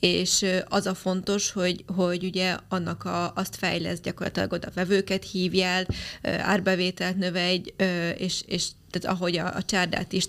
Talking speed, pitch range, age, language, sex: 150 wpm, 180-195 Hz, 20-39, Hungarian, female